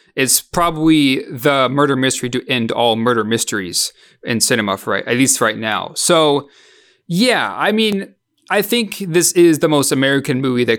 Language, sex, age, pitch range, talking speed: English, male, 30-49, 115-155 Hz, 170 wpm